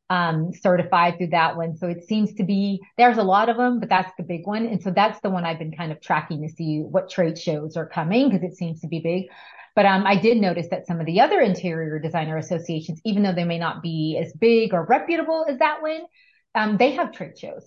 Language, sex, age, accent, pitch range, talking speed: English, female, 30-49, American, 170-215 Hz, 250 wpm